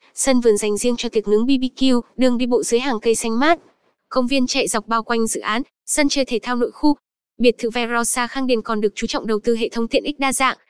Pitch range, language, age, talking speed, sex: 225-260 Hz, Vietnamese, 10-29, 265 wpm, female